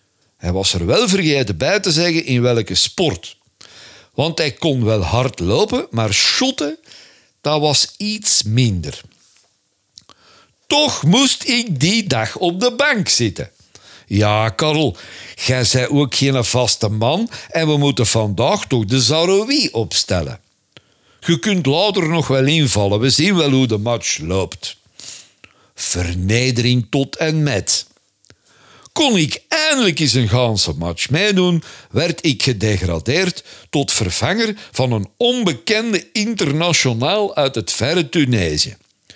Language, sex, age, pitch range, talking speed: Dutch, male, 60-79, 105-155 Hz, 130 wpm